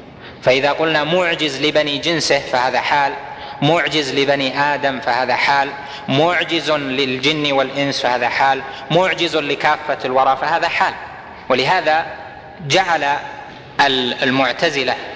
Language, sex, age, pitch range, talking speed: Arabic, male, 20-39, 135-160 Hz, 100 wpm